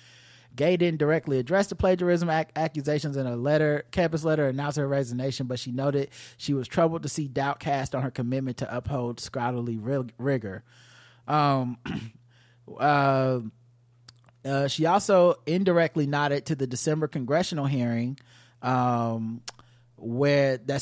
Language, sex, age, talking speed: English, male, 30-49, 135 wpm